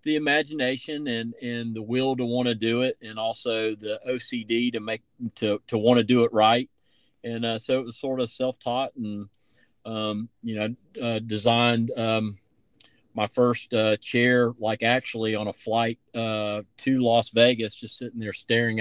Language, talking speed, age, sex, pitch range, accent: English, 180 wpm, 40-59, male, 110-125 Hz, American